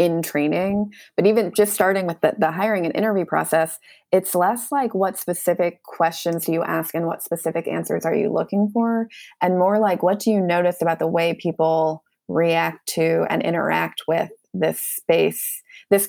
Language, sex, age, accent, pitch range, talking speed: English, female, 20-39, American, 170-210 Hz, 185 wpm